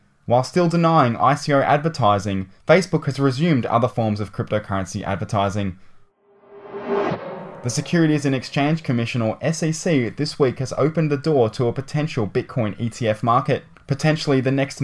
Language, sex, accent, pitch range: English, male, Australian, 110-150 Hz